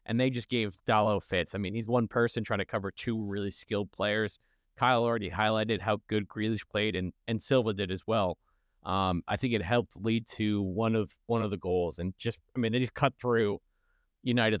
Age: 30-49